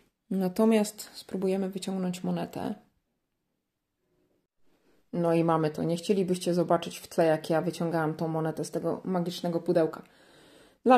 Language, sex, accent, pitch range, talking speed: Polish, female, native, 175-200 Hz, 125 wpm